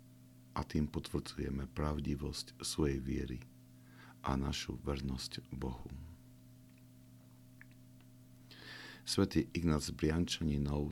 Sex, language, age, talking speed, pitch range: male, Slovak, 50-69, 70 wpm, 70-90 Hz